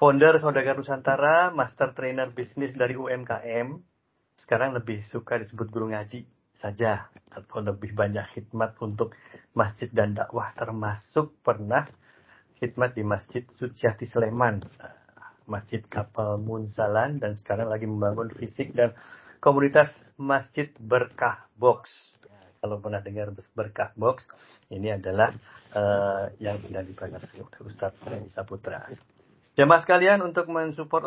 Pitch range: 105-130 Hz